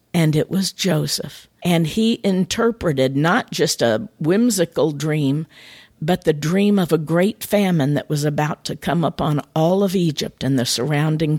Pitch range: 150-200 Hz